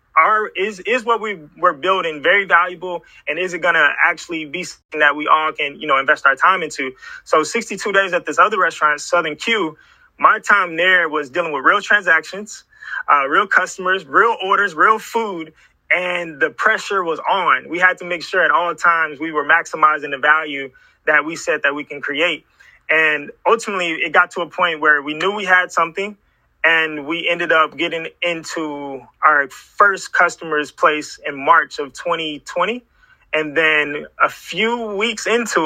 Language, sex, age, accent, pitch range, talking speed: English, male, 20-39, American, 155-195 Hz, 185 wpm